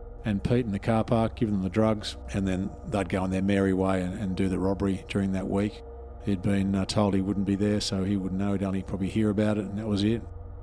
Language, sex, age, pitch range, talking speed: English, male, 40-59, 95-115 Hz, 270 wpm